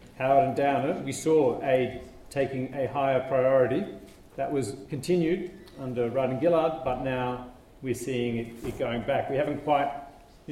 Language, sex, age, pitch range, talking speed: English, male, 40-59, 125-160 Hz, 160 wpm